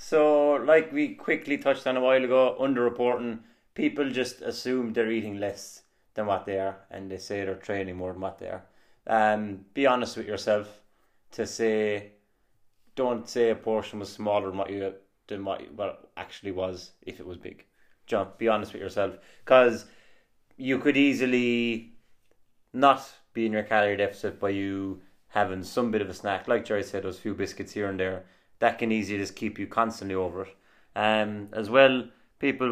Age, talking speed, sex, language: 30-49, 185 wpm, male, English